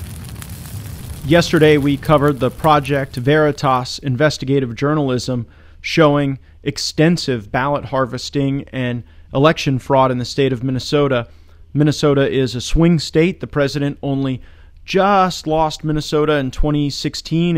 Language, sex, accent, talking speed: English, male, American, 115 wpm